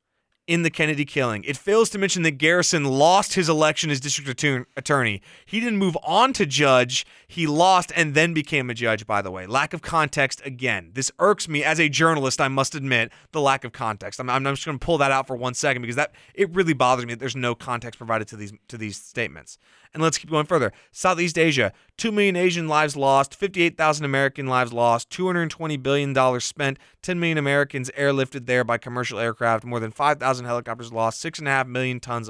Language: English